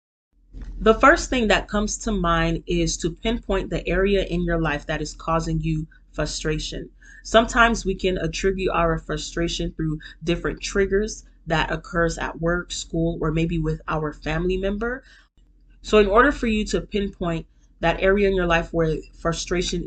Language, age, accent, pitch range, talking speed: English, 30-49, American, 160-195 Hz, 165 wpm